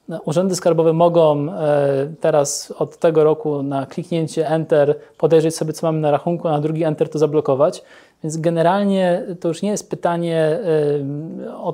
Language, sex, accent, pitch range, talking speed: Polish, male, native, 155-170 Hz, 155 wpm